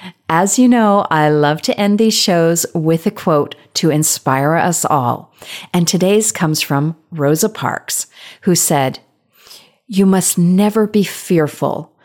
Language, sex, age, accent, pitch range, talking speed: English, female, 40-59, American, 155-210 Hz, 145 wpm